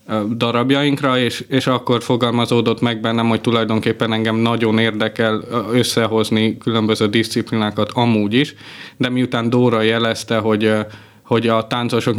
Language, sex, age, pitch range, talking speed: Hungarian, male, 20-39, 110-125 Hz, 125 wpm